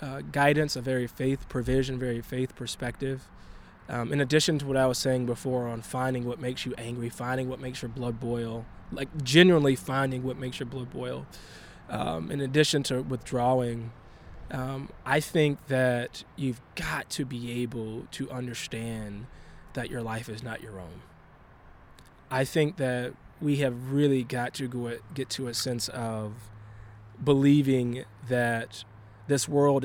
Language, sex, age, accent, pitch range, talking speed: English, male, 20-39, American, 120-145 Hz, 155 wpm